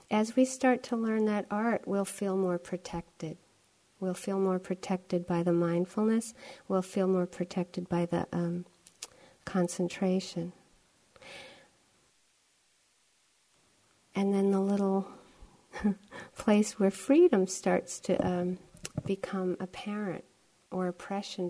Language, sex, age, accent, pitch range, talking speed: English, female, 50-69, American, 175-210 Hz, 110 wpm